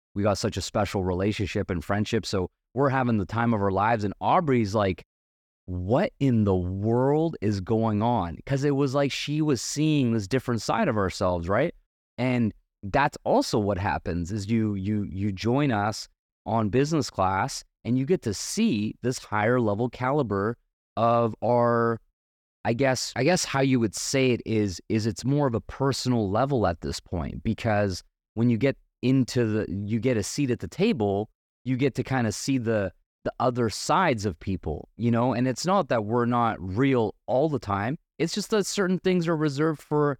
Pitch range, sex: 100-130 Hz, male